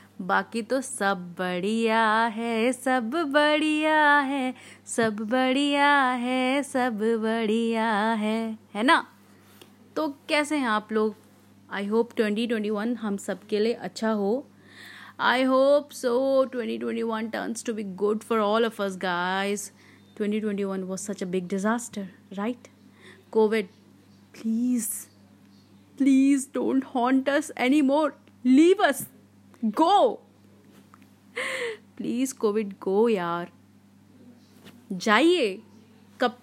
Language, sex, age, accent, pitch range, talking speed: Hindi, female, 30-49, native, 205-265 Hz, 120 wpm